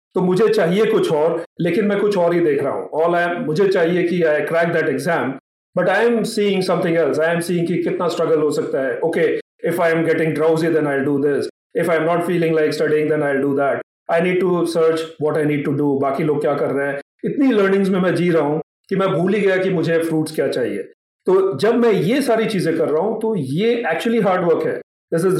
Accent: Indian